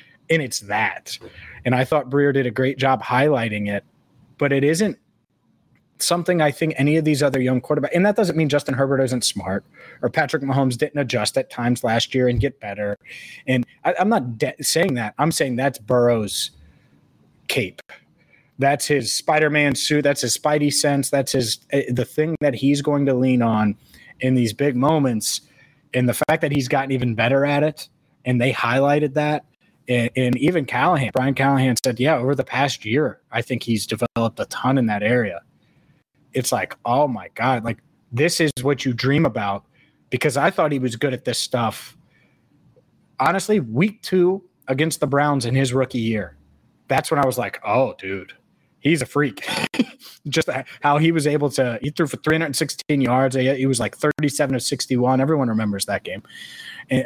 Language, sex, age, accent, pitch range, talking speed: English, male, 30-49, American, 120-150 Hz, 185 wpm